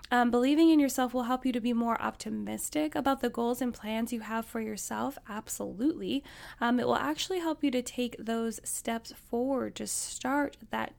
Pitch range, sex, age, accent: 220-255 Hz, female, 10-29, American